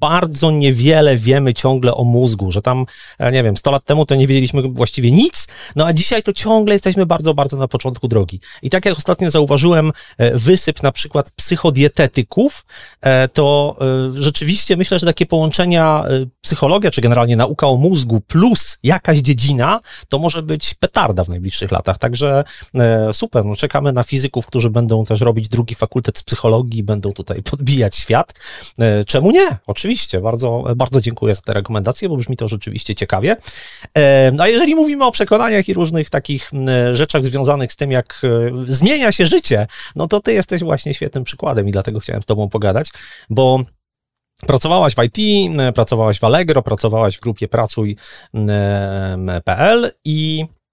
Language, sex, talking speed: Polish, male, 160 wpm